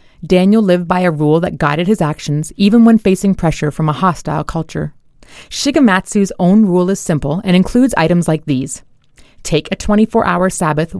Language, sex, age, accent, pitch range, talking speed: English, female, 30-49, American, 160-205 Hz, 170 wpm